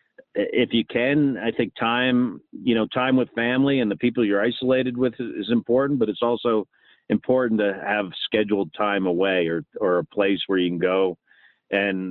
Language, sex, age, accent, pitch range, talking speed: English, male, 50-69, American, 95-110 Hz, 185 wpm